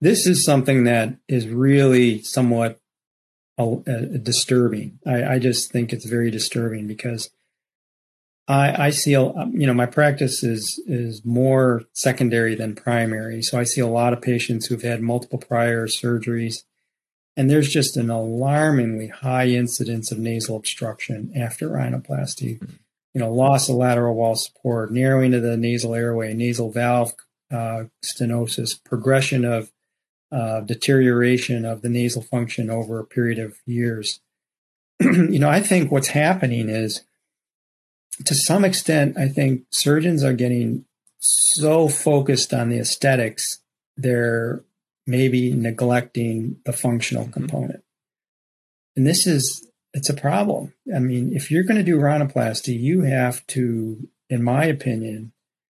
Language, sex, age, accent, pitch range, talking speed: English, male, 40-59, American, 115-135 Hz, 140 wpm